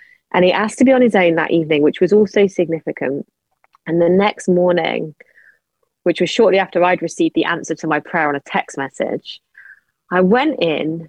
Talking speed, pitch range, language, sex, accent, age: 195 wpm, 175-215 Hz, English, female, British, 30-49